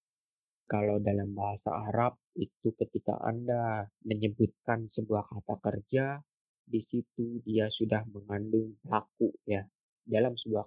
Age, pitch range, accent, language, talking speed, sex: 20-39, 105-115 Hz, native, Indonesian, 110 wpm, male